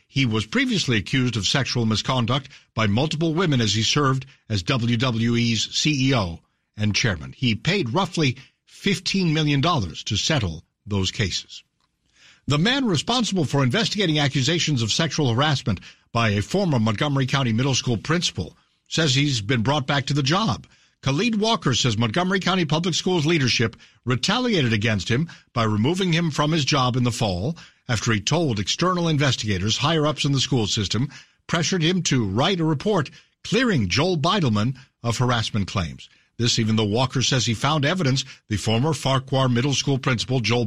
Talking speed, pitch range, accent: 160 wpm, 115-155 Hz, American